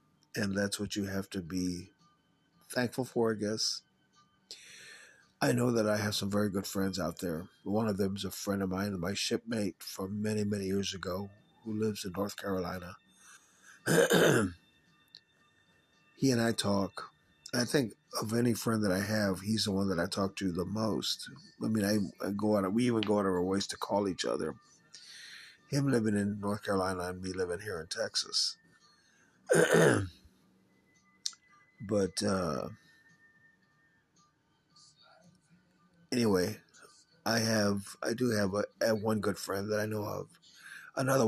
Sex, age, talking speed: male, 50-69, 160 wpm